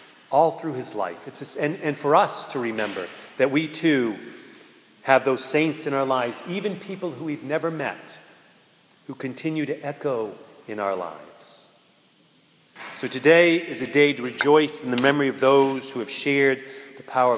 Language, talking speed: English, 170 wpm